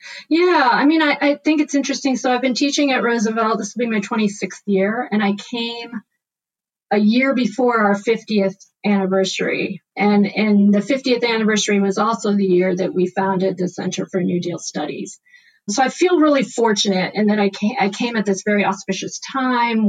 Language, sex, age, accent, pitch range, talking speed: English, female, 40-59, American, 195-240 Hz, 190 wpm